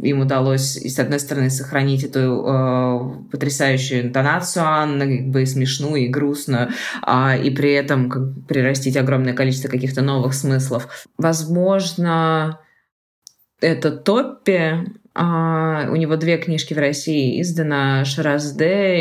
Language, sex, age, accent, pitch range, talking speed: Russian, female, 20-39, native, 140-185 Hz, 115 wpm